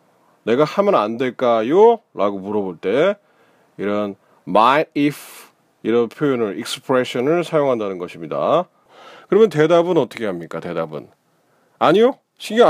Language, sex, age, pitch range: Korean, male, 40-59, 120-175 Hz